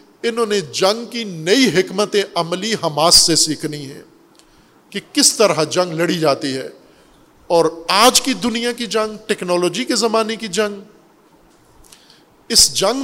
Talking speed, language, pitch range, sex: 145 wpm, Urdu, 155-200 Hz, male